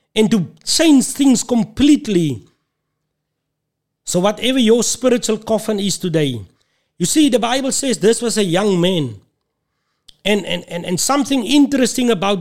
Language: English